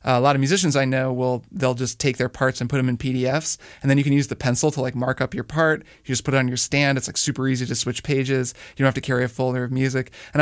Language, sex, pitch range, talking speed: English, male, 125-145 Hz, 315 wpm